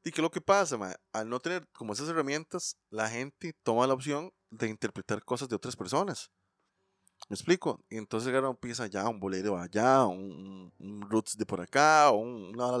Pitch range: 105-170 Hz